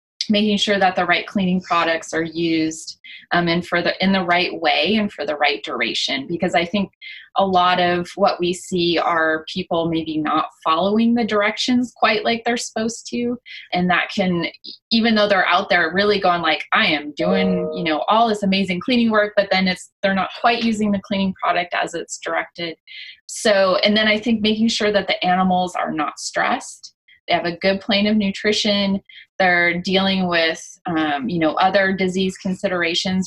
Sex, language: female, English